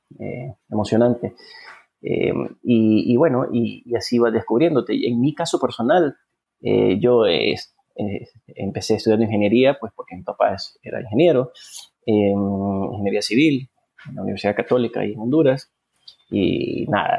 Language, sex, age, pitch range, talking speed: Spanish, male, 30-49, 105-140 Hz, 145 wpm